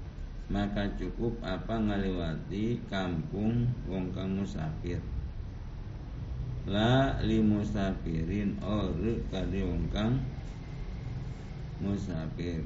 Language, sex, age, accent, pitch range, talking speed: Indonesian, male, 50-69, native, 85-105 Hz, 60 wpm